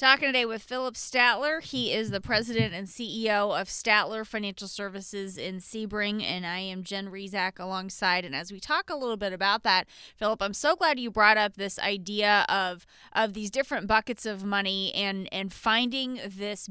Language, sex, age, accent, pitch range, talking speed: English, female, 20-39, American, 195-230 Hz, 185 wpm